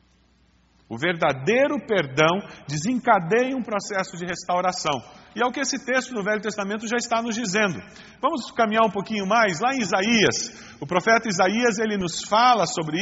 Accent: Brazilian